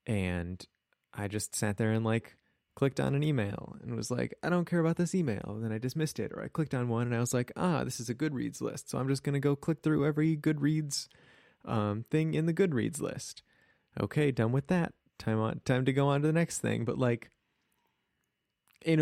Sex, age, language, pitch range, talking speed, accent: male, 20-39, English, 105-145 Hz, 230 wpm, American